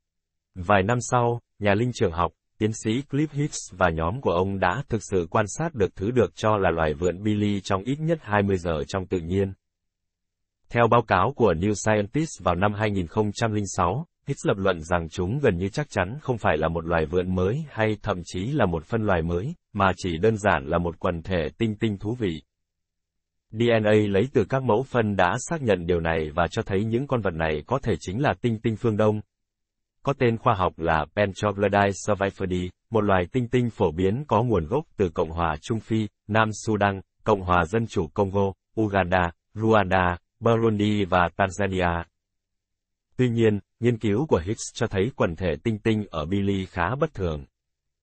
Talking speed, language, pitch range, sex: 195 wpm, Vietnamese, 90-115 Hz, male